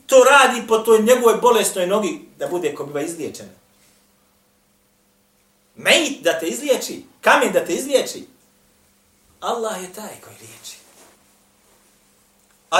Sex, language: male, English